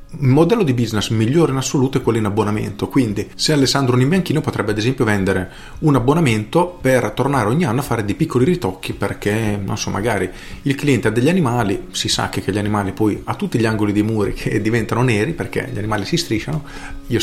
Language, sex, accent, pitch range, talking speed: Italian, male, native, 105-140 Hz, 210 wpm